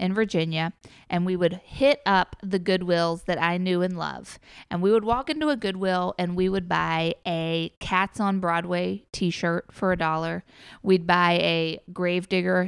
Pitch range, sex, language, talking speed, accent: 175-205 Hz, female, English, 175 wpm, American